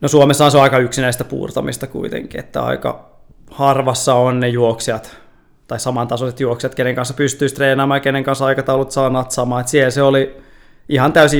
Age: 20-39